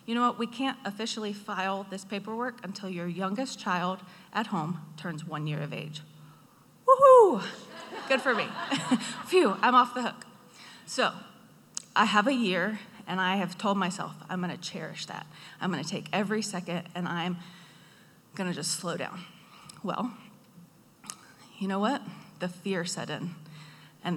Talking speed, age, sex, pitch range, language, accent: 155 wpm, 30-49, female, 170-210 Hz, English, American